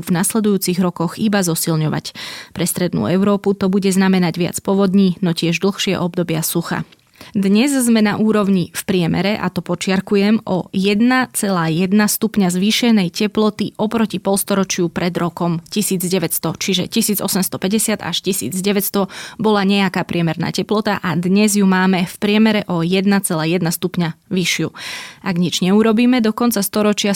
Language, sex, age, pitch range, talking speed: Slovak, female, 20-39, 175-205 Hz, 135 wpm